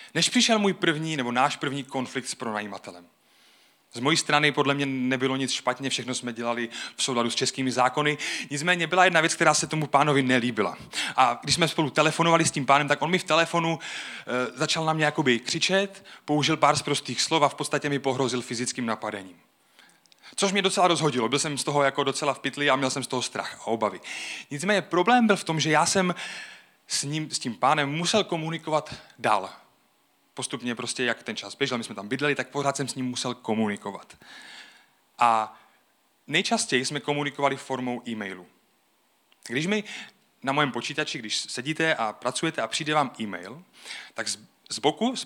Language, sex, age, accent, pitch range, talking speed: Czech, male, 30-49, native, 125-160 Hz, 190 wpm